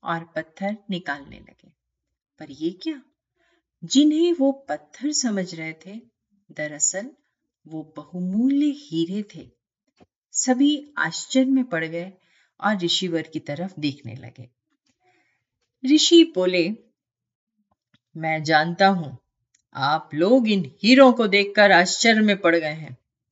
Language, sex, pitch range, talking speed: Hindi, female, 155-255 Hz, 110 wpm